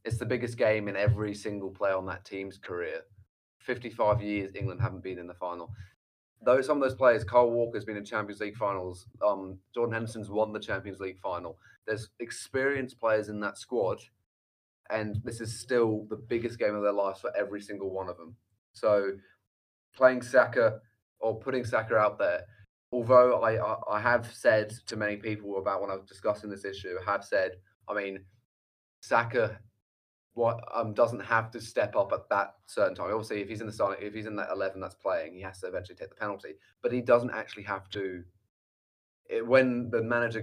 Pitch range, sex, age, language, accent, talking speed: 100-120 Hz, male, 20-39, English, British, 200 wpm